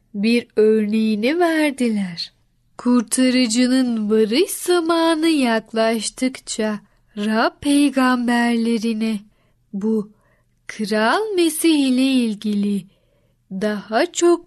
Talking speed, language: 65 wpm, Turkish